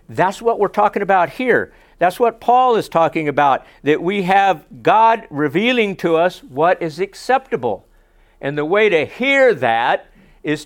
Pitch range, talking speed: 150-205 Hz, 165 wpm